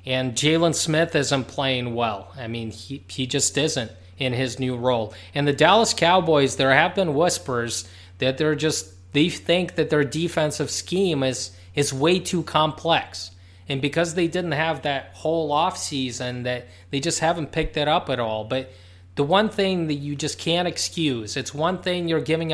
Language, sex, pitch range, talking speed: English, male, 125-165 Hz, 185 wpm